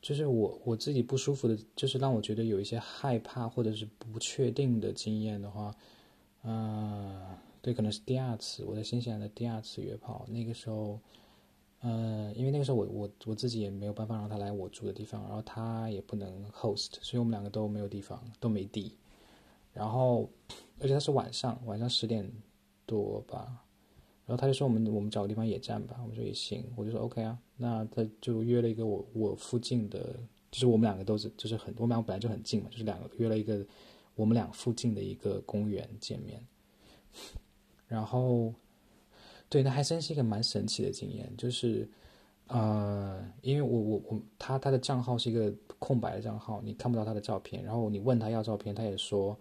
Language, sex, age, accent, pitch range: Chinese, male, 20-39, native, 105-120 Hz